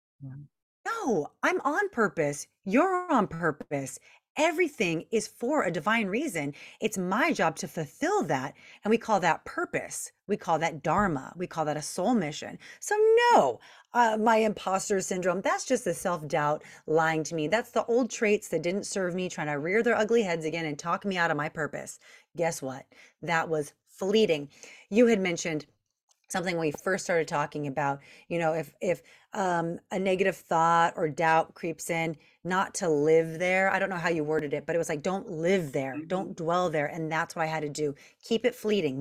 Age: 30-49